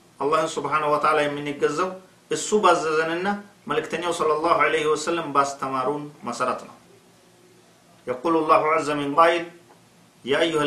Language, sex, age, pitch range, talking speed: Amharic, male, 50-69, 125-165 Hz, 120 wpm